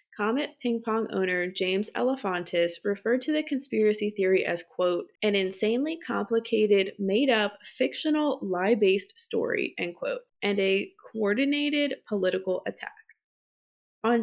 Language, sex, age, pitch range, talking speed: English, female, 20-39, 195-260 Hz, 120 wpm